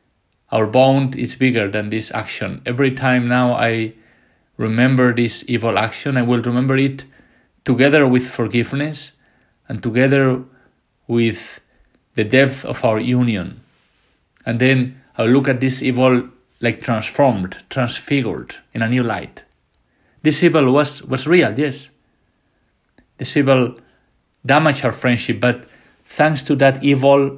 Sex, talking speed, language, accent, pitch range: male, 130 wpm, English, Spanish, 115-135 Hz